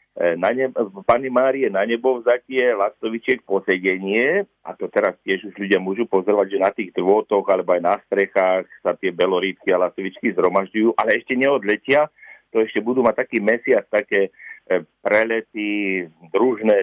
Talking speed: 155 wpm